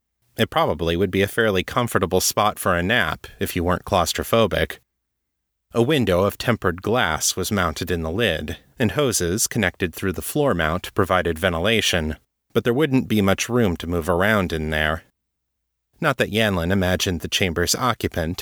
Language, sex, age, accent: English, male, 30-49, American